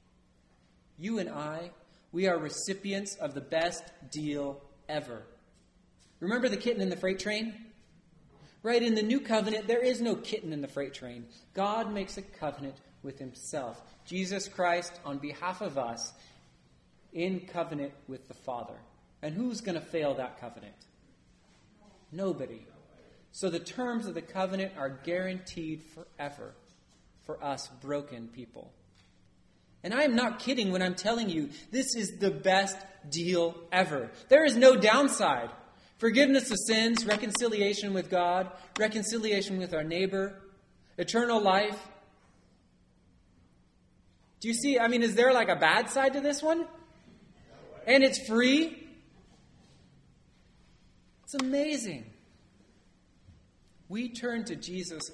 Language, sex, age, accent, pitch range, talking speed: English, male, 30-49, American, 140-215 Hz, 135 wpm